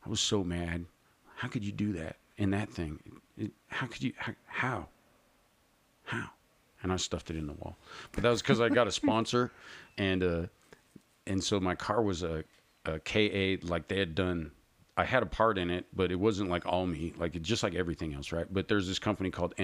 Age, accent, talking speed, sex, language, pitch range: 40-59, American, 215 wpm, male, English, 85-105 Hz